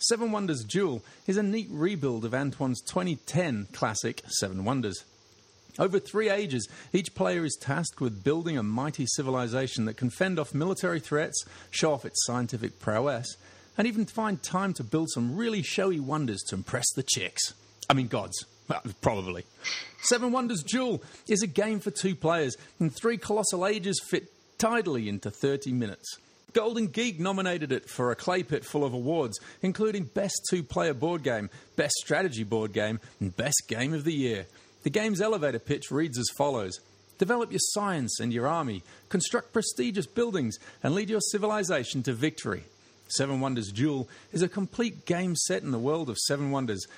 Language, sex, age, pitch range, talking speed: English, male, 40-59, 120-190 Hz, 170 wpm